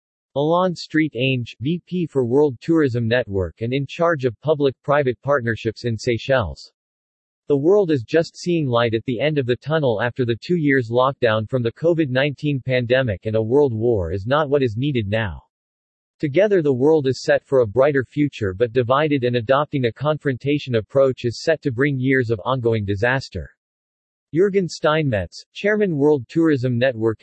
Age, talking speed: 40-59, 170 wpm